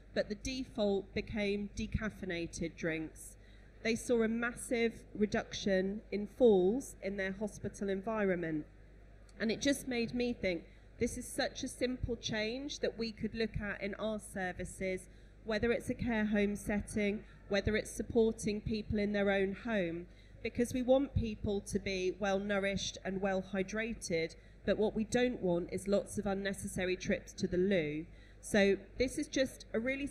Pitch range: 190-225 Hz